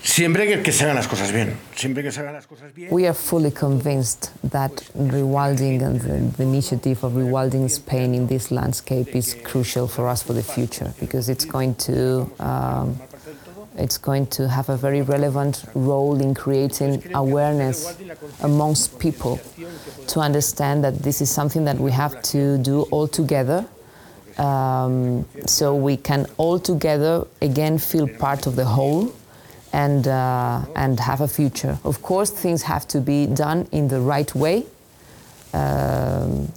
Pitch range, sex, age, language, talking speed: 130-150 Hz, female, 20-39, English, 135 wpm